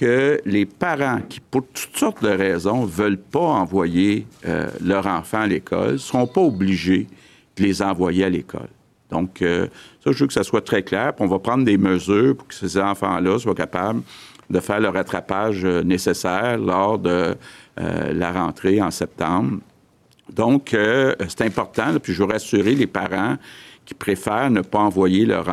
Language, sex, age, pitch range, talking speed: French, male, 50-69, 95-105 Hz, 180 wpm